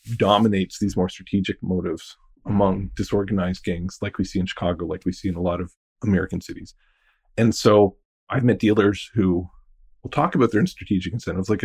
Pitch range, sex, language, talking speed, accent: 95-120 Hz, male, English, 180 wpm, American